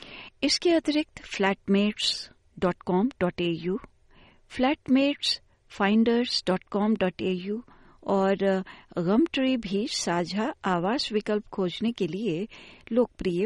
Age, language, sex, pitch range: 60-79, Hindi, female, 185-240 Hz